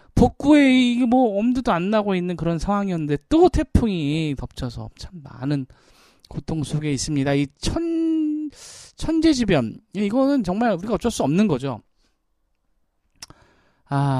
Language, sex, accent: Korean, male, native